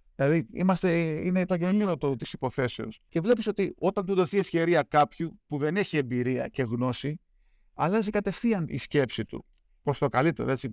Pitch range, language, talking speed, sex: 140-180 Hz, Greek, 170 wpm, male